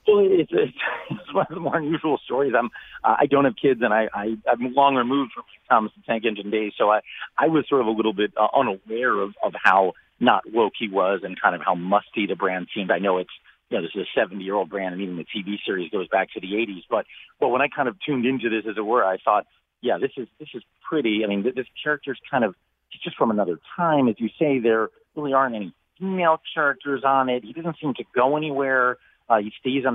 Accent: American